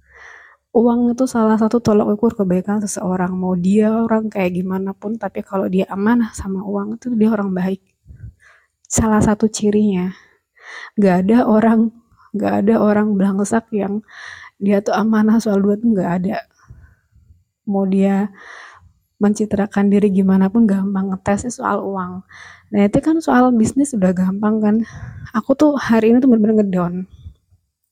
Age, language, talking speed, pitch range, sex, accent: 20-39, Indonesian, 145 wpm, 195-230 Hz, female, native